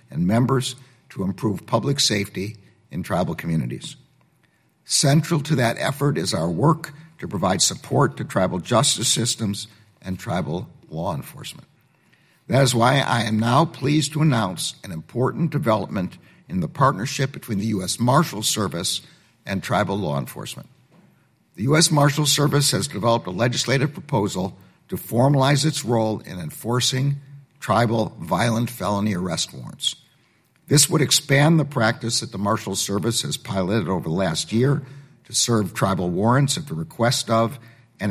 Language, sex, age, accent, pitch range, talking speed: English, male, 60-79, American, 110-140 Hz, 150 wpm